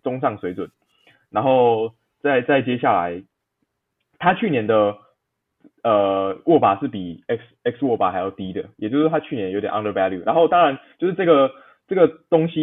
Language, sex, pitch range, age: Chinese, male, 100-140 Hz, 20-39